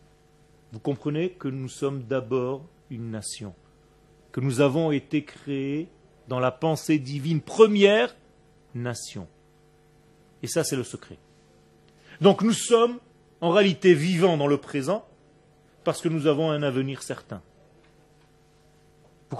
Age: 40-59